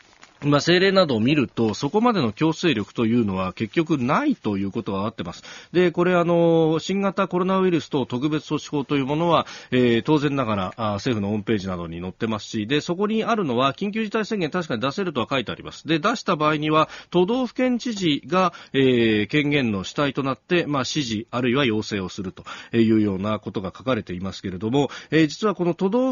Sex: male